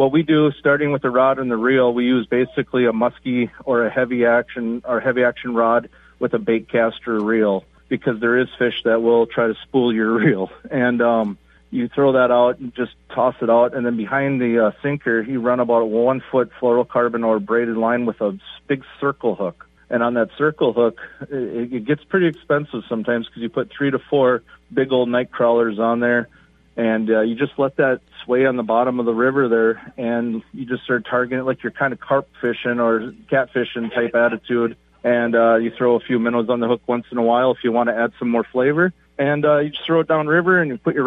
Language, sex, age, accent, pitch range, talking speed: English, male, 40-59, American, 115-135 Hz, 230 wpm